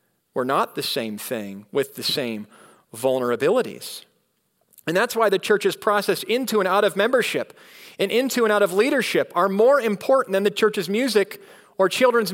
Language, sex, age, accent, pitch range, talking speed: English, male, 40-59, American, 125-210 Hz, 170 wpm